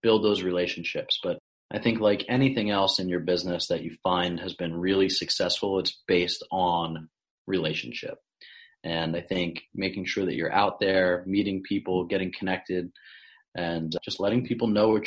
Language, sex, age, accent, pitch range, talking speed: English, male, 30-49, American, 85-95 Hz, 165 wpm